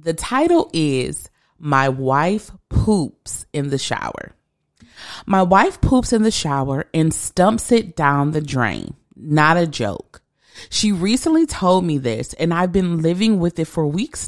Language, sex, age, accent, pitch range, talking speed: English, female, 30-49, American, 150-215 Hz, 155 wpm